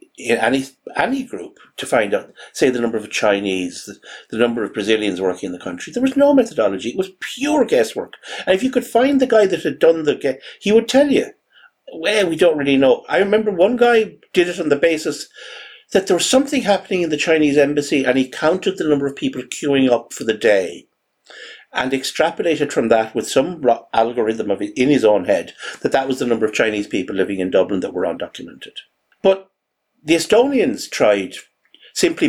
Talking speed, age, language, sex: 205 wpm, 60-79, English, male